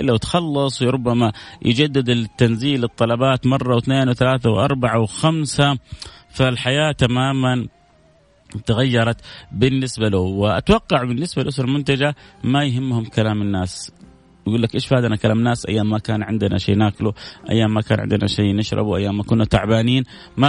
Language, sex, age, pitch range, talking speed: Arabic, male, 30-49, 105-130 Hz, 140 wpm